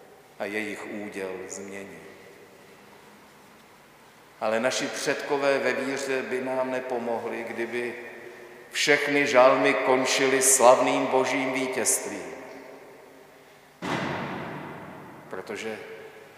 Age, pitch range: 50-69, 115-135 Hz